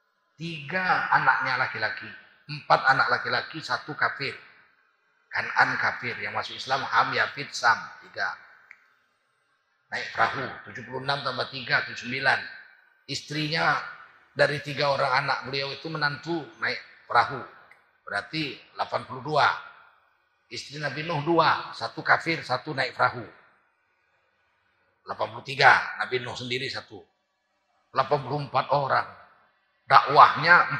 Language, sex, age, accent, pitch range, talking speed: Indonesian, male, 40-59, native, 135-165 Hz, 105 wpm